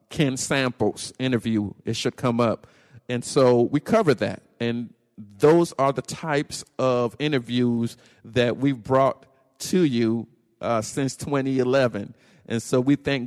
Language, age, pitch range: English, 50-69, 115-140 Hz